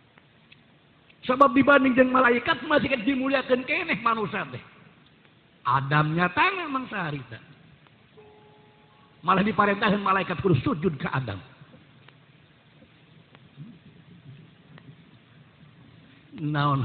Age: 50-69